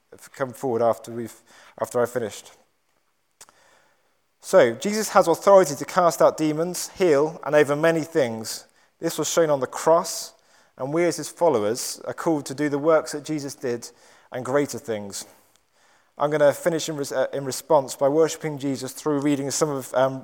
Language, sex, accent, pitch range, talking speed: English, male, British, 130-170 Hz, 170 wpm